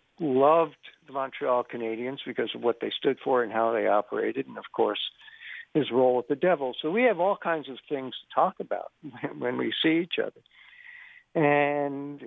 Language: English